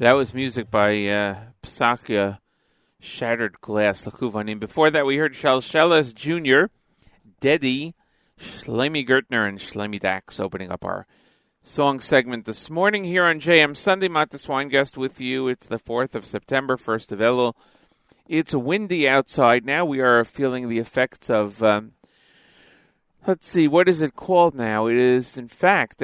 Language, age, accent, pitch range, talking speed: English, 40-59, American, 110-145 Hz, 150 wpm